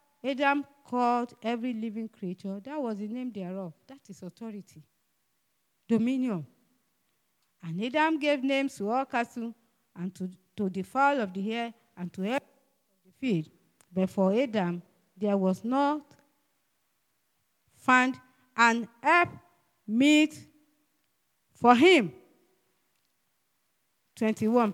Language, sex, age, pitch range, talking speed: English, female, 50-69, 185-265 Hz, 115 wpm